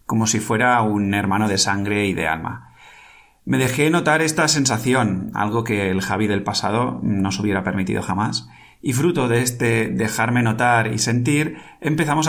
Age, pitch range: 30-49, 100-120 Hz